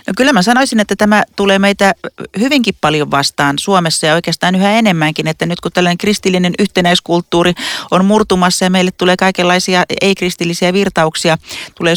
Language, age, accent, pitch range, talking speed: Finnish, 40-59, native, 165-205 Hz, 155 wpm